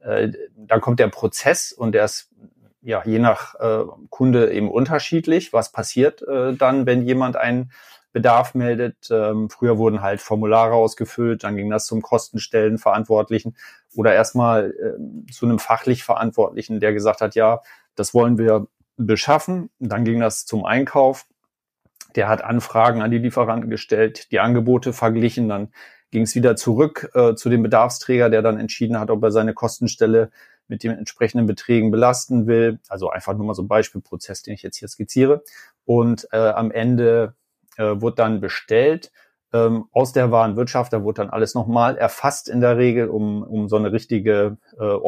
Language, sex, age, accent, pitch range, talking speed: German, male, 30-49, German, 110-125 Hz, 170 wpm